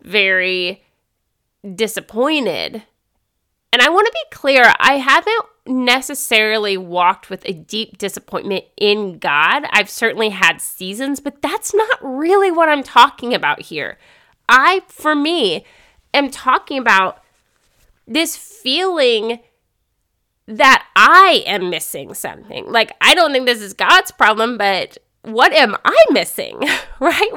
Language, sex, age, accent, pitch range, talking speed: English, female, 30-49, American, 210-305 Hz, 125 wpm